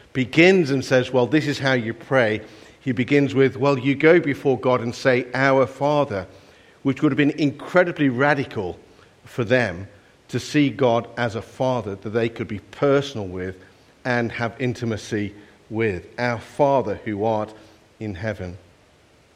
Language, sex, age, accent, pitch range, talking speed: English, male, 50-69, British, 115-145 Hz, 160 wpm